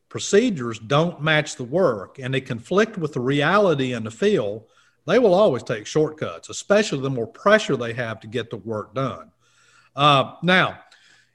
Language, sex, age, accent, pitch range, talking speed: English, male, 40-59, American, 115-160 Hz, 170 wpm